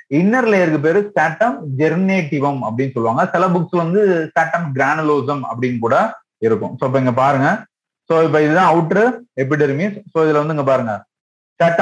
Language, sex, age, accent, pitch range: Tamil, male, 30-49, native, 135-185 Hz